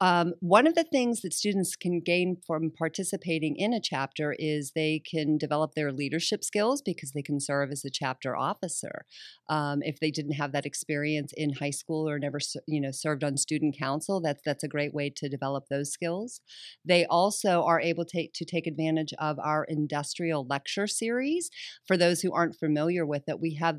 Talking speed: 190 wpm